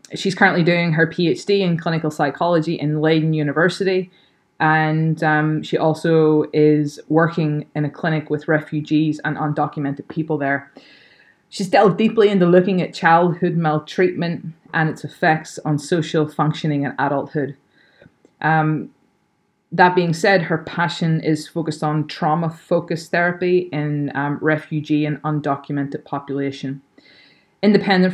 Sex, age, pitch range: female, 20-39, 150-170 Hz